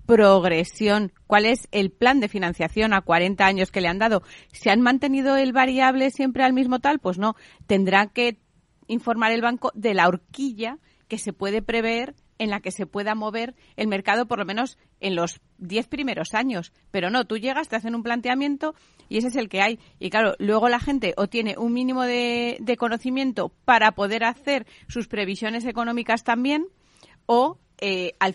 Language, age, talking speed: Spanish, 30-49, 185 wpm